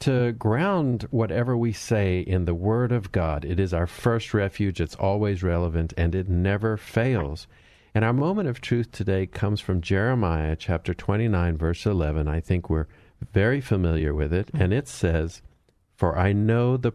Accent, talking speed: American, 175 wpm